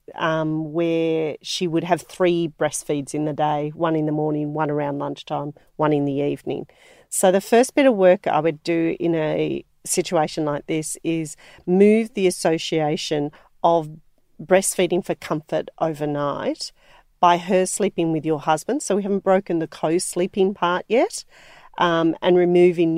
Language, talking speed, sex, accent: English, 160 wpm, female, Australian